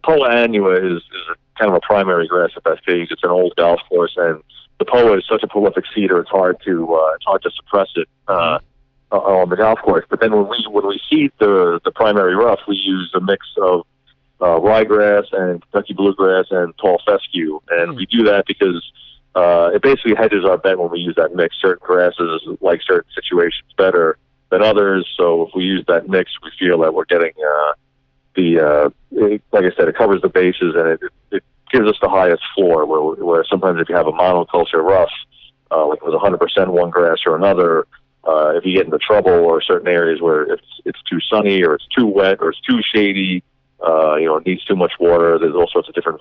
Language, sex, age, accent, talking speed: English, male, 40-59, American, 220 wpm